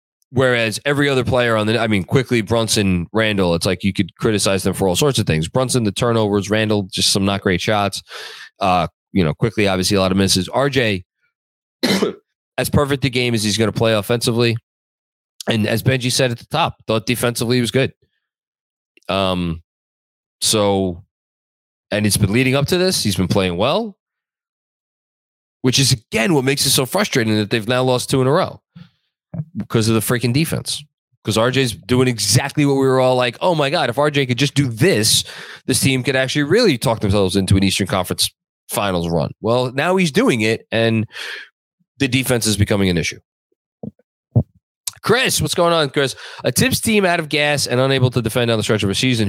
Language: English